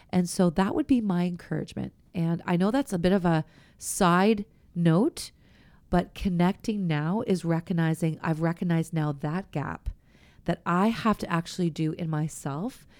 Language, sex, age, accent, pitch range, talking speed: English, female, 30-49, American, 170-215 Hz, 160 wpm